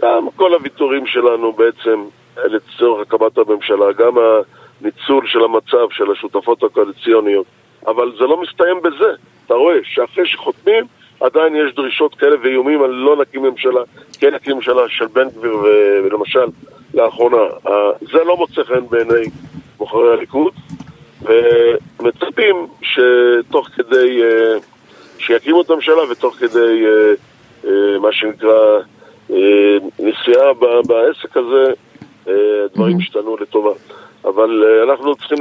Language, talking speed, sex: Hebrew, 115 wpm, male